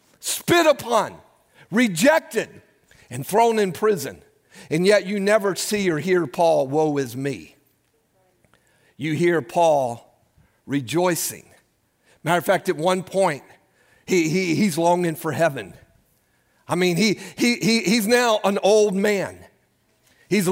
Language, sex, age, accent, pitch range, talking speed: English, male, 50-69, American, 135-210 Hz, 130 wpm